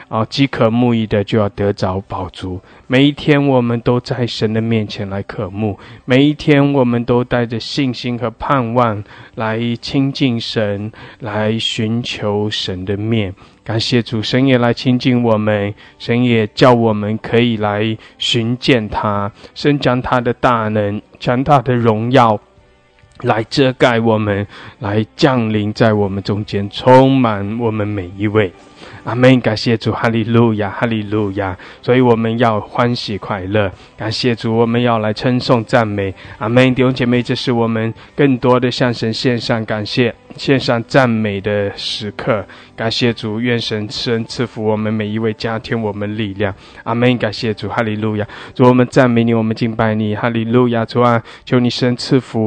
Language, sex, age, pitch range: English, male, 20-39, 105-125 Hz